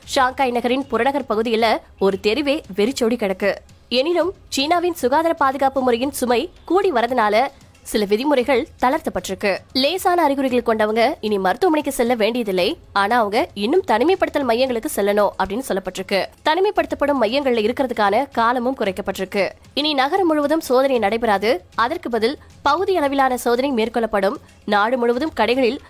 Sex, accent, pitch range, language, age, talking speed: female, native, 215-280 Hz, Tamil, 20-39, 95 wpm